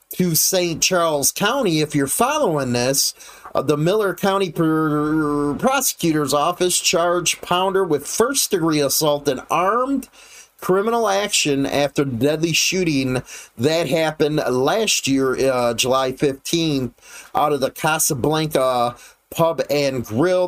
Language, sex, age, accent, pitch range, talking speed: English, male, 30-49, American, 145-185 Hz, 120 wpm